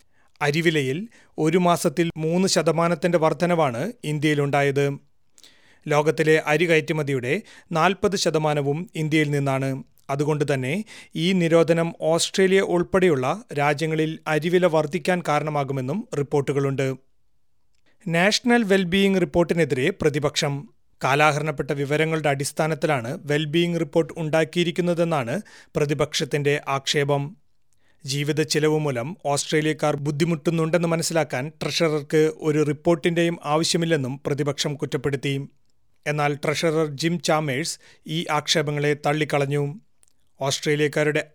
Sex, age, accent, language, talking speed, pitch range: male, 30-49, native, Malayalam, 80 wpm, 145-170 Hz